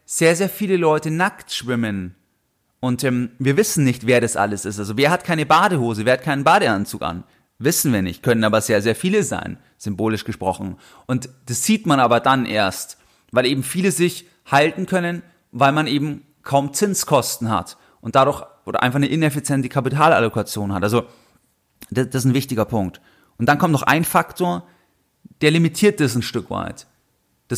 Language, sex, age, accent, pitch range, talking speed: German, male, 30-49, German, 115-155 Hz, 180 wpm